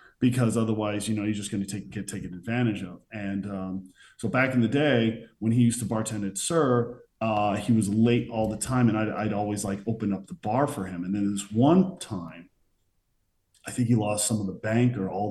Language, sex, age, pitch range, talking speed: English, male, 40-59, 95-115 Hz, 235 wpm